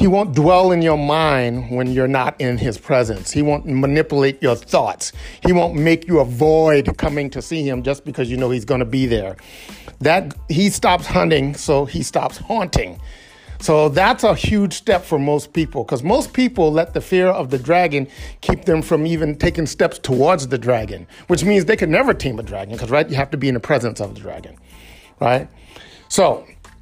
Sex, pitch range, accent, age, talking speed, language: male, 130-185 Hz, American, 50-69, 200 wpm, English